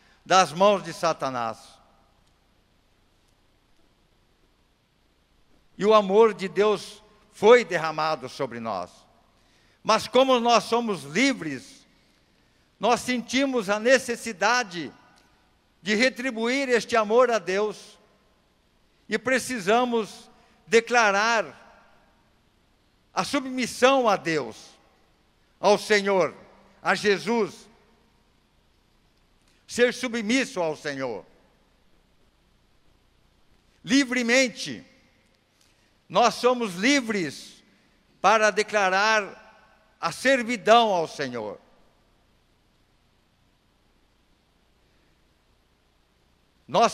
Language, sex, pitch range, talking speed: Portuguese, male, 175-240 Hz, 70 wpm